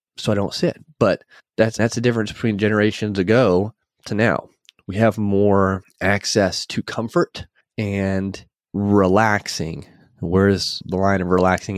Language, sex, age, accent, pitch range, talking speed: English, male, 20-39, American, 95-115 Hz, 145 wpm